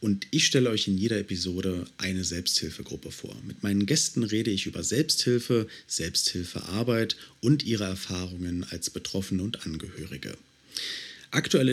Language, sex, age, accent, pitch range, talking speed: German, male, 40-59, German, 95-120 Hz, 140 wpm